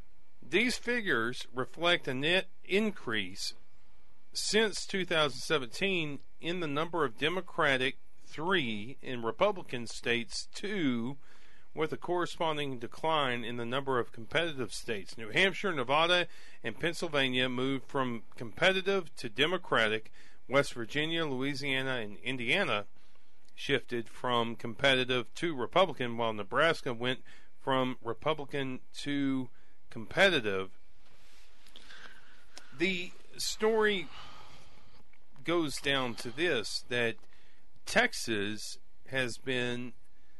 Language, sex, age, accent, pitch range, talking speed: English, male, 40-59, American, 115-160 Hz, 95 wpm